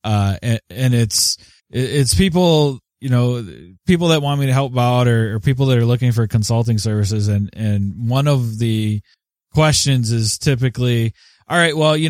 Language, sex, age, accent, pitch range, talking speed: English, male, 20-39, American, 110-135 Hz, 180 wpm